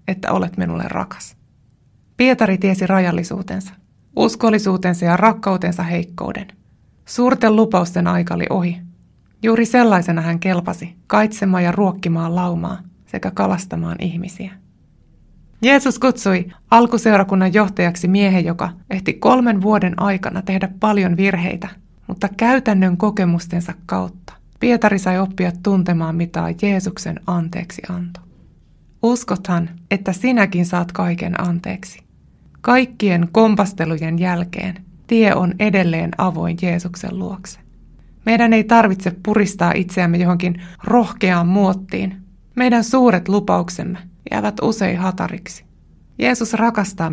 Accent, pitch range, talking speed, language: native, 175-205 Hz, 105 wpm, Finnish